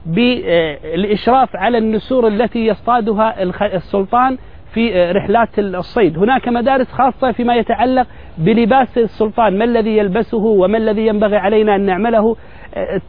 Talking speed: 115 wpm